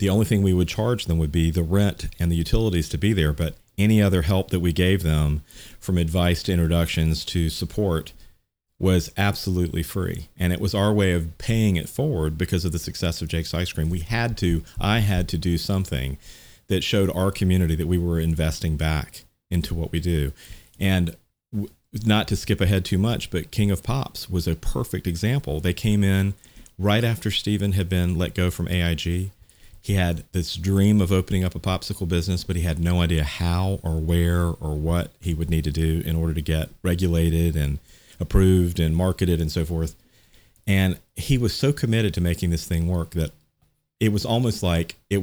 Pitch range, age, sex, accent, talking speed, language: 85-100 Hz, 40-59, male, American, 200 wpm, English